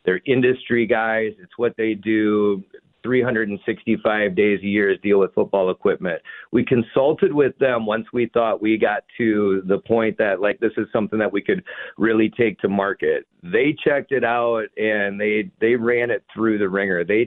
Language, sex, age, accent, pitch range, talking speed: English, male, 40-59, American, 105-130 Hz, 180 wpm